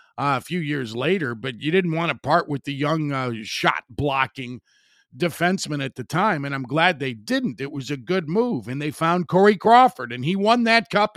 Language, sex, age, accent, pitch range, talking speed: English, male, 50-69, American, 135-185 Hz, 215 wpm